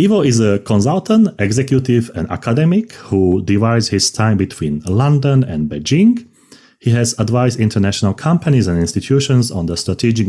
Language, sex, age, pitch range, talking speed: English, male, 30-49, 90-125 Hz, 145 wpm